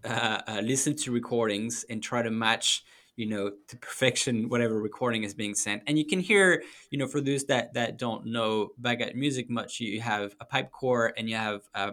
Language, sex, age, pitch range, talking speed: English, male, 10-29, 105-130 Hz, 210 wpm